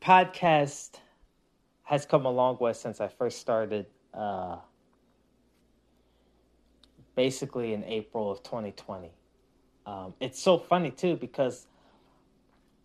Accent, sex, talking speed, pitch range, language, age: American, male, 105 wpm, 115-150 Hz, English, 20-39